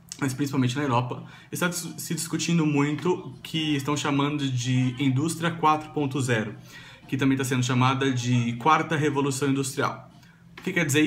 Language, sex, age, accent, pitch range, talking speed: Portuguese, male, 20-39, Brazilian, 135-165 Hz, 150 wpm